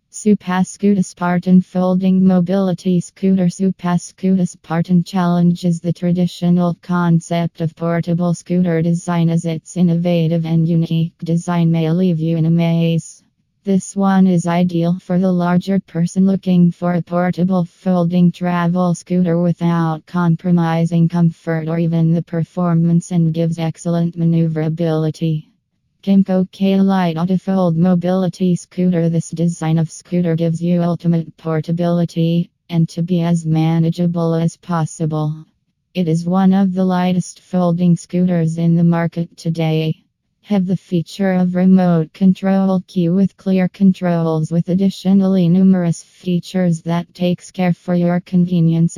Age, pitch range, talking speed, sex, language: 20-39, 165-180 Hz, 135 wpm, female, English